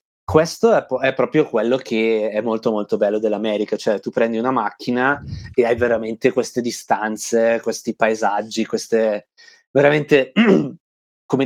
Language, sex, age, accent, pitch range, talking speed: Italian, male, 20-39, native, 110-135 Hz, 140 wpm